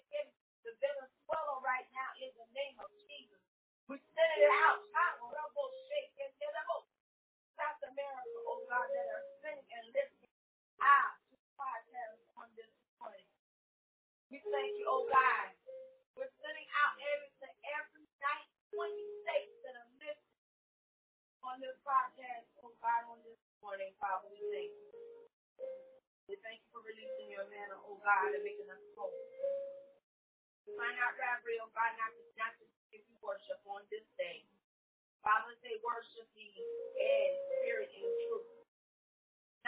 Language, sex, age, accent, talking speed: English, female, 30-49, American, 140 wpm